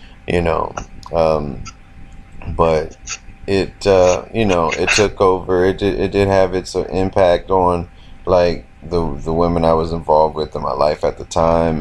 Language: English